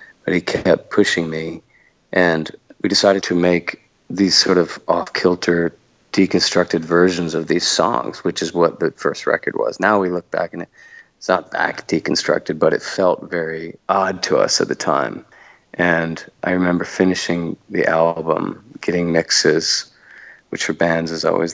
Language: English